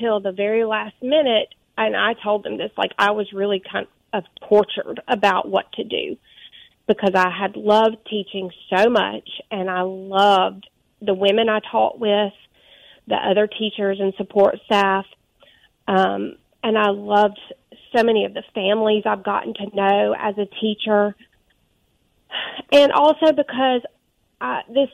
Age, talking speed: 30-49, 145 wpm